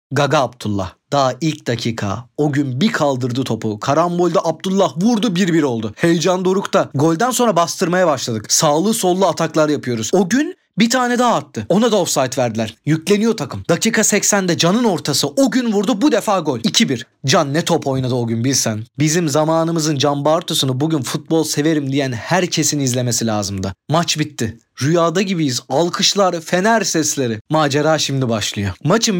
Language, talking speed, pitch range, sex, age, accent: Turkish, 160 wpm, 135-210 Hz, male, 40-59, native